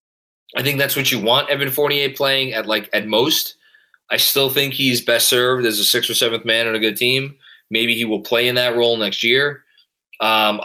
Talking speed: 220 wpm